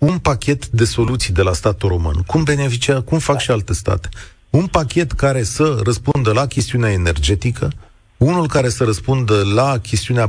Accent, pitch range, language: native, 100-140 Hz, Romanian